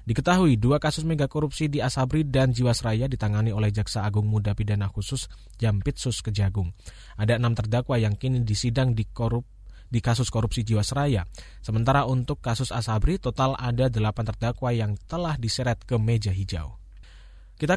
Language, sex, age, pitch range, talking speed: Indonesian, male, 20-39, 110-145 Hz, 150 wpm